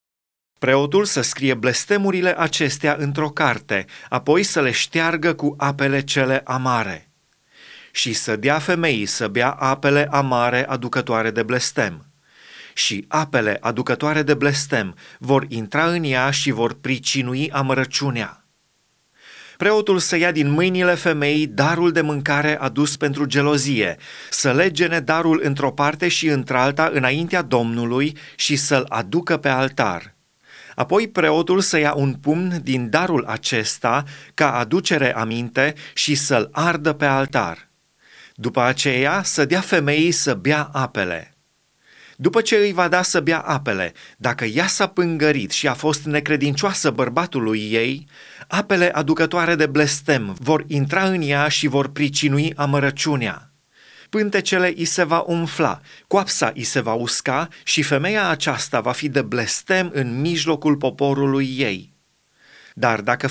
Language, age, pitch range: Romanian, 30-49, 130-165 Hz